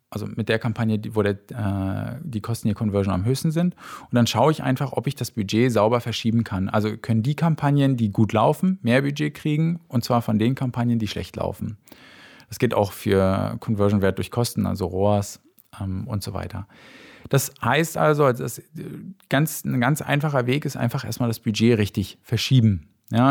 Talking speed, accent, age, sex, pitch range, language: 190 wpm, German, 40-59, male, 105-130 Hz, German